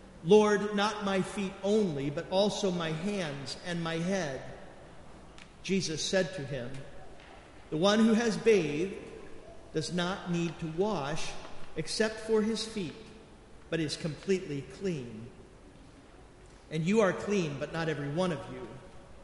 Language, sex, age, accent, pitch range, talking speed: English, male, 50-69, American, 155-200 Hz, 135 wpm